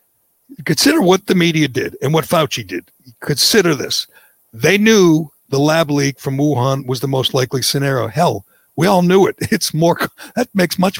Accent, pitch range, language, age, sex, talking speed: American, 135-180 Hz, English, 60-79, male, 180 wpm